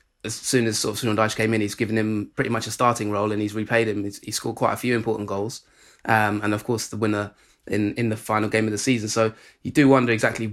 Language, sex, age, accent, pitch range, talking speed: English, male, 20-39, British, 110-125 Hz, 260 wpm